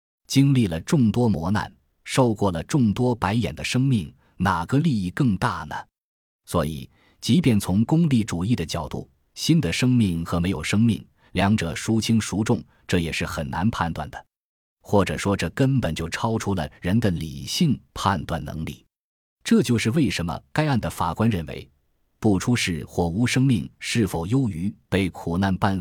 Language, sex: Chinese, male